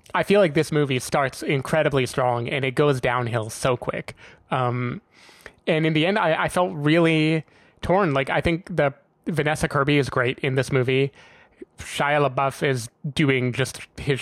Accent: American